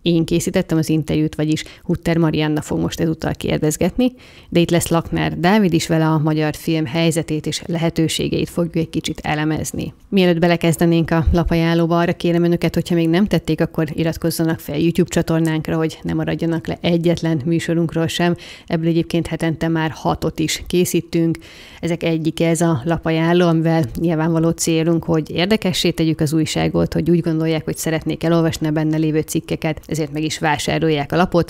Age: 30-49